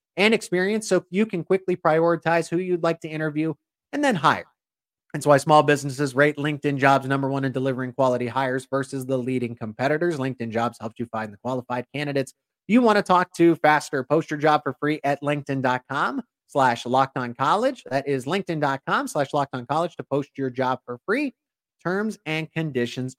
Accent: American